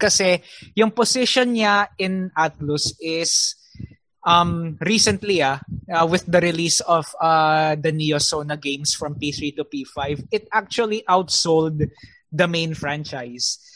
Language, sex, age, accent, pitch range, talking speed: English, male, 20-39, Filipino, 145-175 Hz, 125 wpm